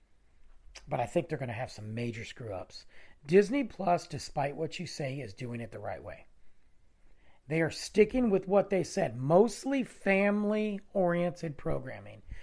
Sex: male